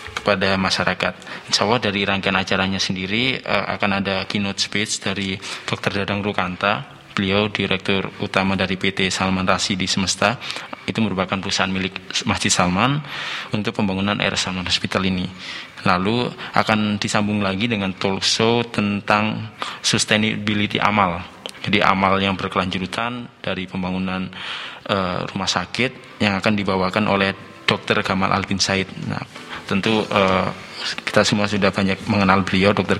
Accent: native